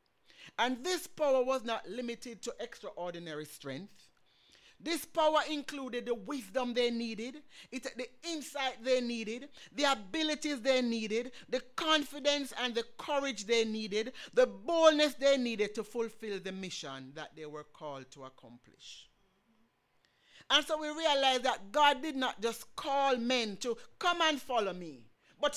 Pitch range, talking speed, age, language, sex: 200-270 Hz, 145 wpm, 60-79, English, male